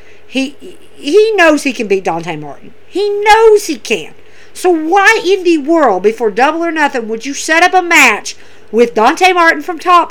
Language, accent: English, American